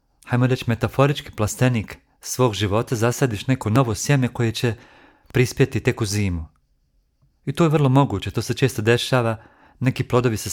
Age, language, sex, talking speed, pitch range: 40-59, Croatian, male, 160 wpm, 105-125 Hz